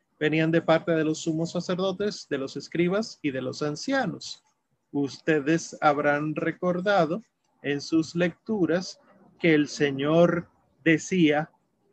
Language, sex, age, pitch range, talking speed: Spanish, male, 30-49, 150-185 Hz, 120 wpm